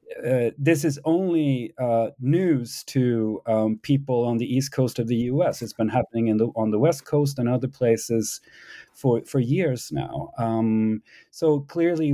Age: 40-59